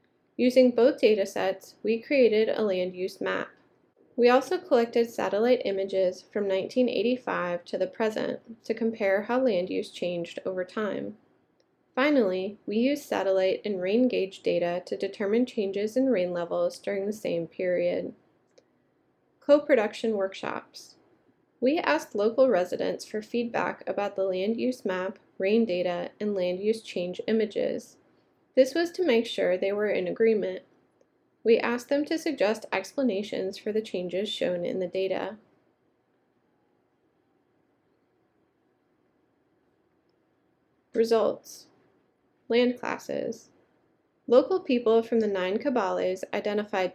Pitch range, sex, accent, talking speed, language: 190-250 Hz, female, American, 125 wpm, English